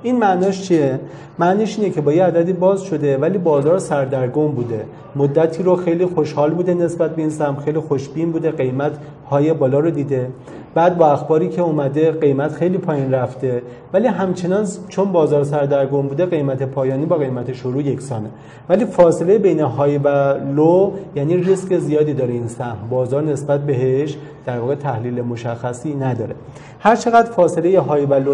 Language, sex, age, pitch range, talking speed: Persian, male, 40-59, 135-175 Hz, 165 wpm